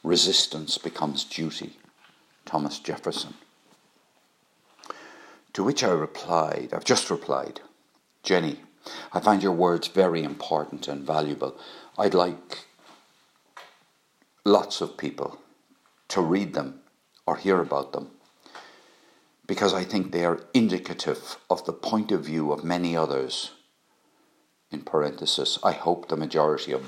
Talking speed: 120 wpm